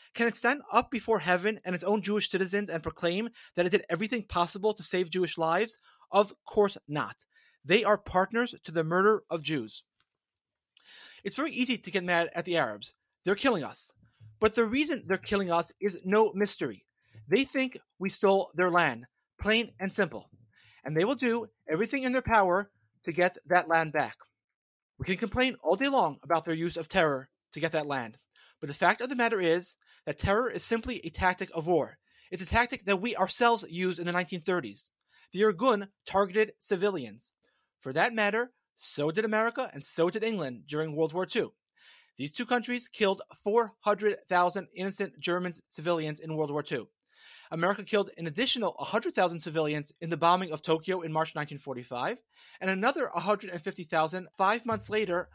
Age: 30-49